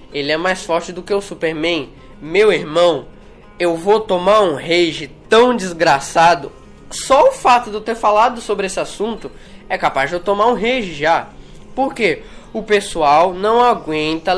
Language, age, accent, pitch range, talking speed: English, 10-29, Brazilian, 160-220 Hz, 165 wpm